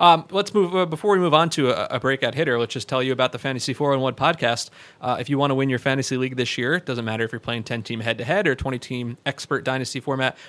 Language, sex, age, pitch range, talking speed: English, male, 30-49, 120-145 Hz, 295 wpm